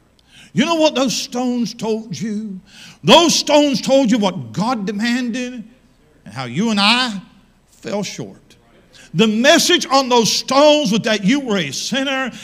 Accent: American